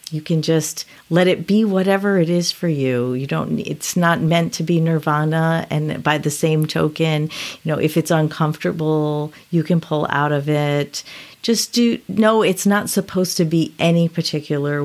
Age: 40-59